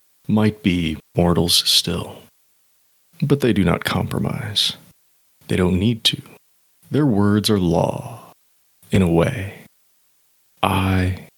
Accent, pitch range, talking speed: American, 90-115 Hz, 110 wpm